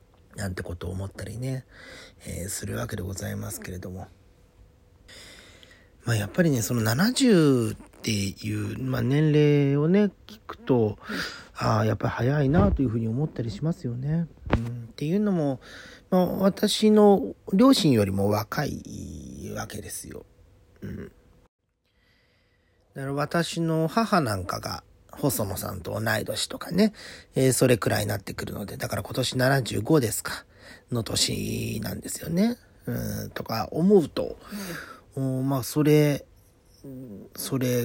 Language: Japanese